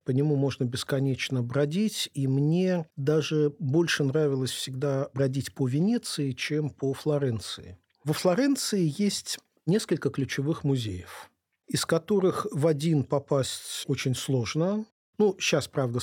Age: 40-59